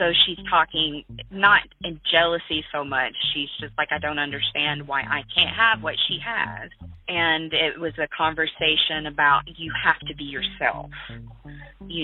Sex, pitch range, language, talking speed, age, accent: female, 145-175 Hz, English, 165 wpm, 30-49, American